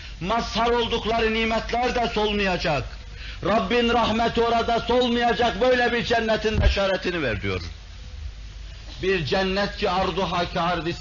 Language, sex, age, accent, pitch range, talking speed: Turkish, male, 60-79, native, 145-220 Hz, 115 wpm